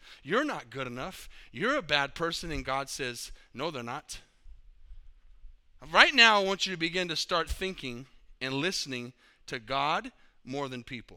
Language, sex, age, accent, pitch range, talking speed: English, male, 40-59, American, 150-225 Hz, 165 wpm